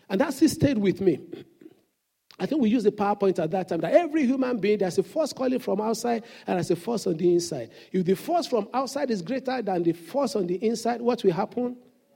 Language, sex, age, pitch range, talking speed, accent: English, male, 50-69, 215-285 Hz, 235 wpm, Nigerian